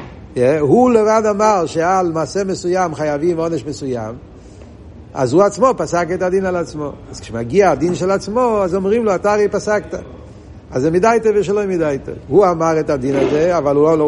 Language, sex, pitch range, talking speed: Hebrew, male, 120-175 Hz, 195 wpm